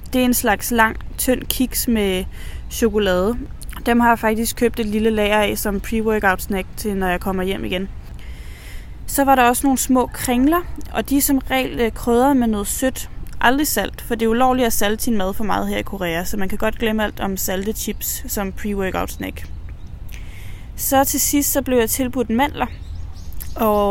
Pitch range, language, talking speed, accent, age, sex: 195-240 Hz, English, 195 wpm, Danish, 20-39, female